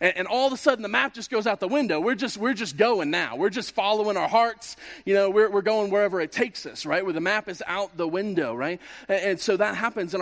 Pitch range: 185-220 Hz